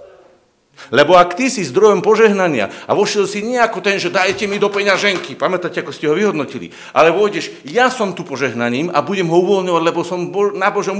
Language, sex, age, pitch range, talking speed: Slovak, male, 50-69, 175-230 Hz, 190 wpm